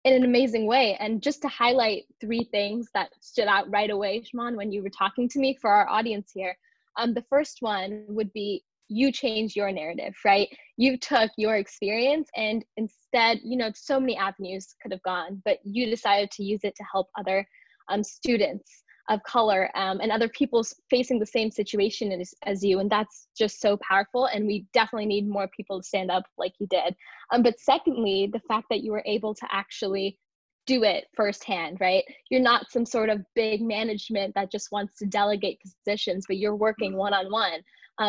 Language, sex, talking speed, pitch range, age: English, female, 195 wpm, 205-240 Hz, 10-29